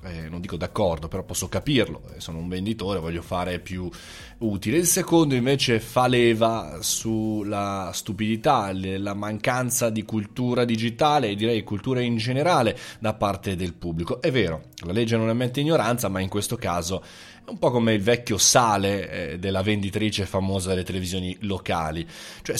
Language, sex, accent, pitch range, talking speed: Italian, male, native, 90-115 Hz, 160 wpm